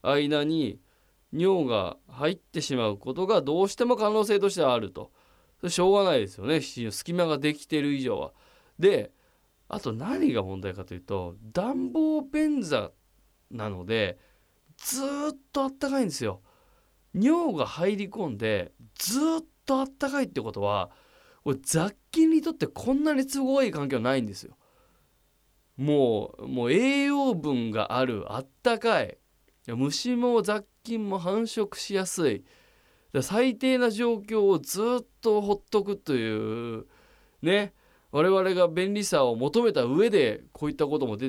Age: 20-39